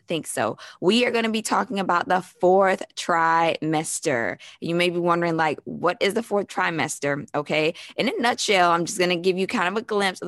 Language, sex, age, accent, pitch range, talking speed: English, female, 20-39, American, 165-205 Hz, 215 wpm